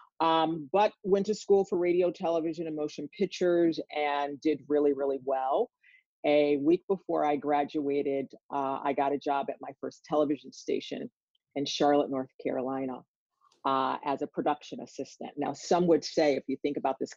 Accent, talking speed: American, 170 wpm